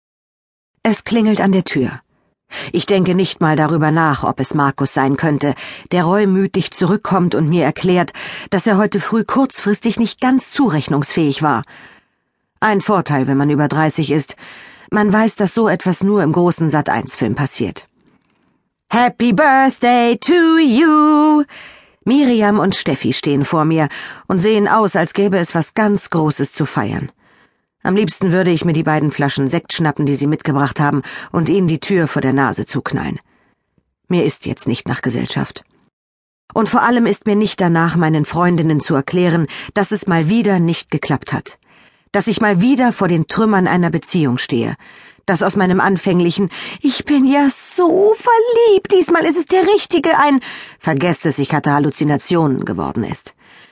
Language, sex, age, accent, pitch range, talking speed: German, female, 50-69, German, 150-215 Hz, 165 wpm